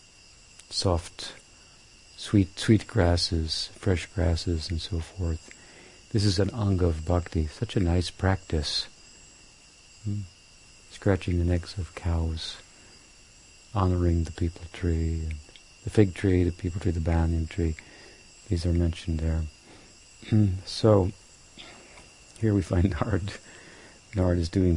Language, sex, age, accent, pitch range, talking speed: English, male, 60-79, American, 85-100 Hz, 120 wpm